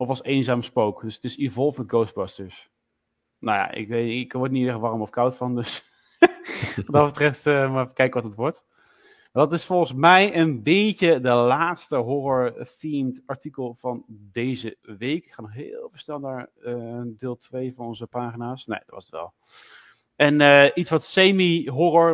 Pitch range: 120-150 Hz